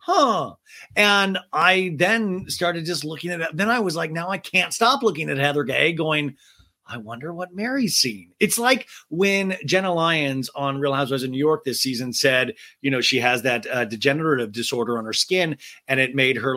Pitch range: 135-215 Hz